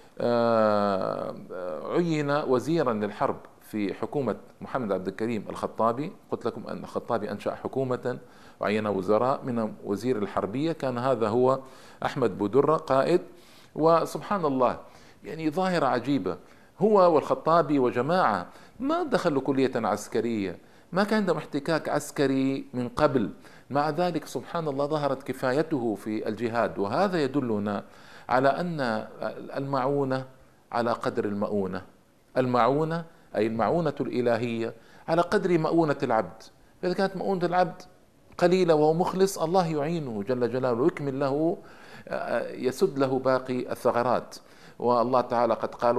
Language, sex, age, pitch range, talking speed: Arabic, male, 50-69, 120-165 Hz, 115 wpm